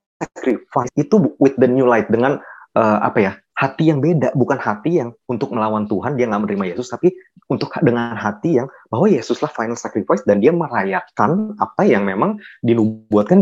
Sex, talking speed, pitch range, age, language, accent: male, 175 wpm, 110-175 Hz, 20-39, Indonesian, native